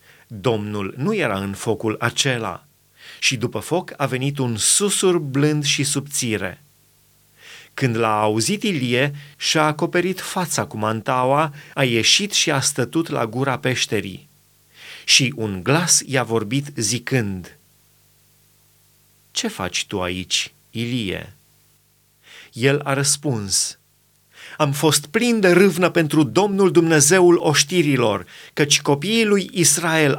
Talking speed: 120 wpm